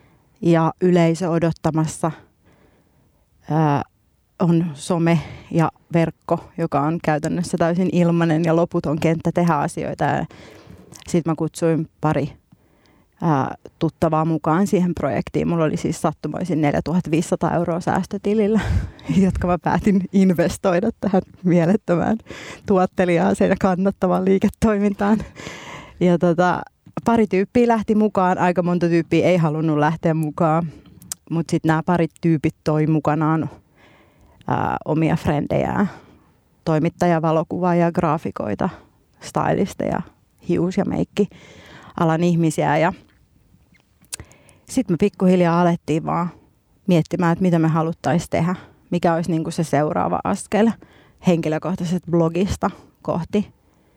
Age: 30-49